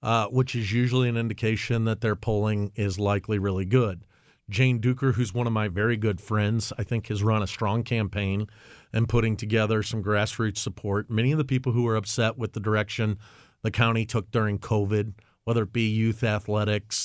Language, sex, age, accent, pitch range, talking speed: English, male, 40-59, American, 105-125 Hz, 195 wpm